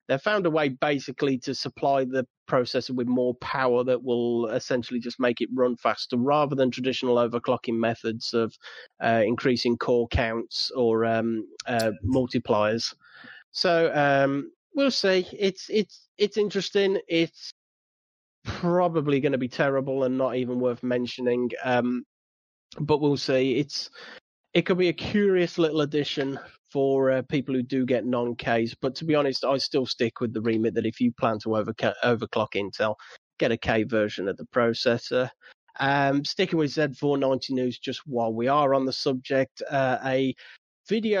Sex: male